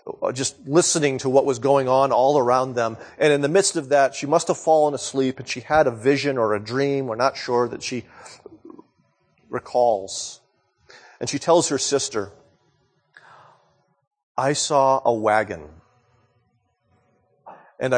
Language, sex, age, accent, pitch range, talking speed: English, male, 40-59, American, 115-145 Hz, 150 wpm